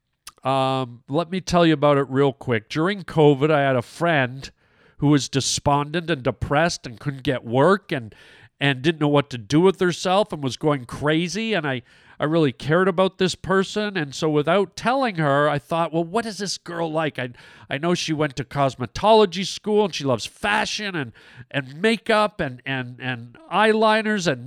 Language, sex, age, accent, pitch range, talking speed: English, male, 50-69, American, 145-215 Hz, 190 wpm